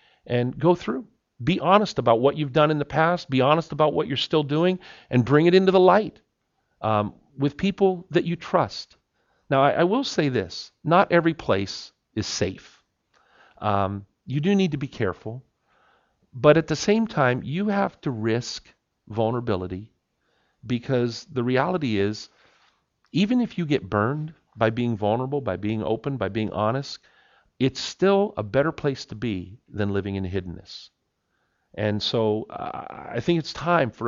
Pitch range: 115-150 Hz